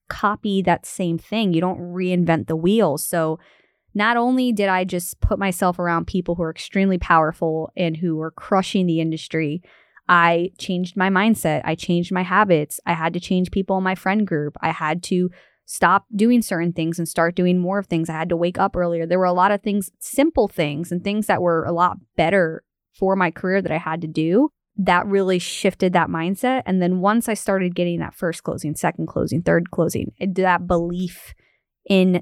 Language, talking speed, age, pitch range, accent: English, 205 wpm, 20-39, 165-190 Hz, American